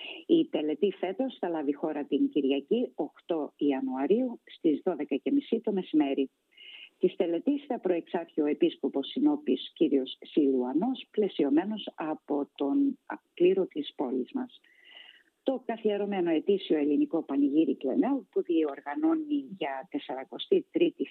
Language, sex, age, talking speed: Greek, female, 50-69, 115 wpm